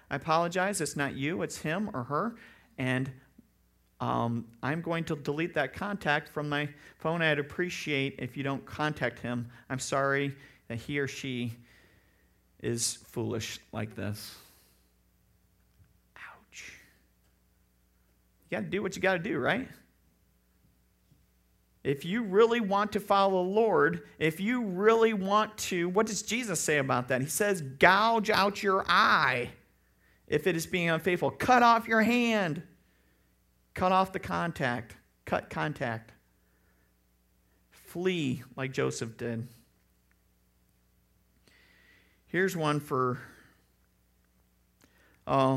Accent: American